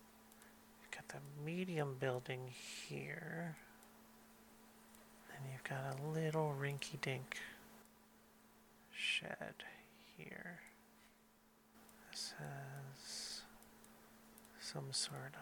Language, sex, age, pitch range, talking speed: English, male, 30-49, 120-140 Hz, 70 wpm